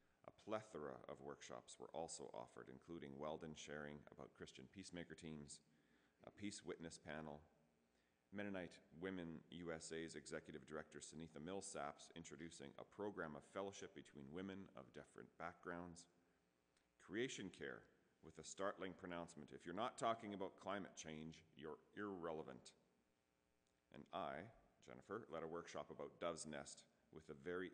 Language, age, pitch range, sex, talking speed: English, 40-59, 70-85 Hz, male, 135 wpm